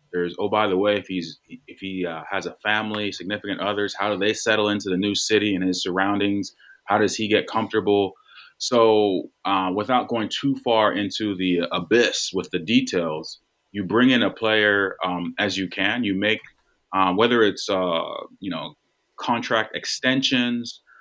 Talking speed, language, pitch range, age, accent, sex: 175 wpm, English, 90-110 Hz, 30-49, American, male